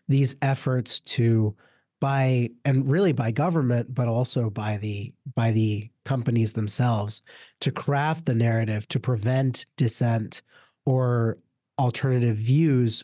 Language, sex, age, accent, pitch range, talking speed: English, male, 30-49, American, 115-140 Hz, 120 wpm